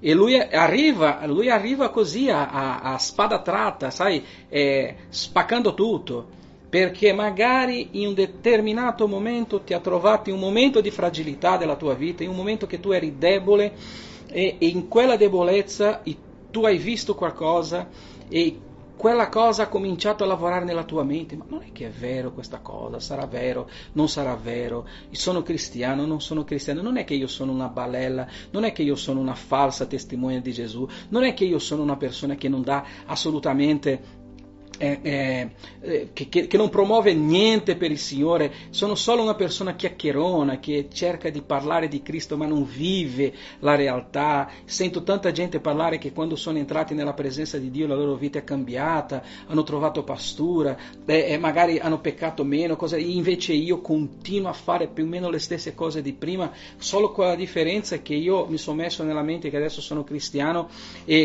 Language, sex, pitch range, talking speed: Italian, male, 140-190 Hz, 180 wpm